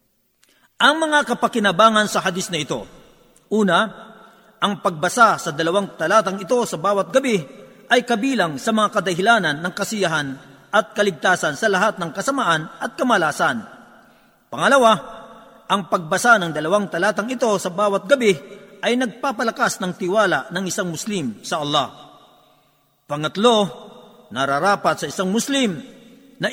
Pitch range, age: 180-230 Hz, 40-59